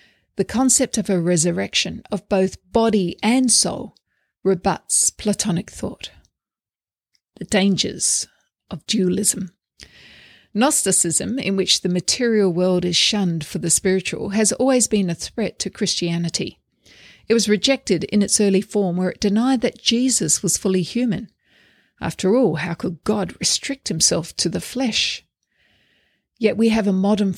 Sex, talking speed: female, 140 wpm